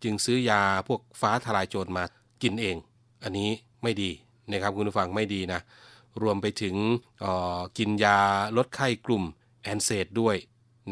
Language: Thai